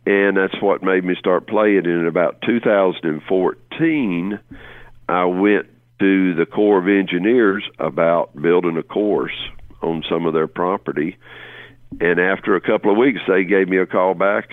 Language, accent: English, American